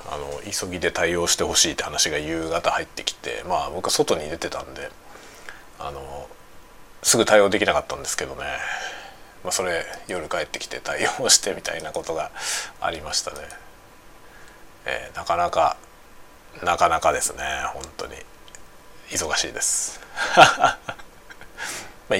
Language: Japanese